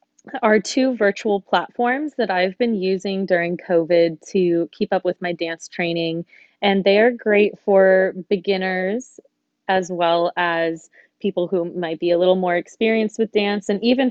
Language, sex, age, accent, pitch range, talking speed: English, female, 20-39, American, 175-215 Hz, 160 wpm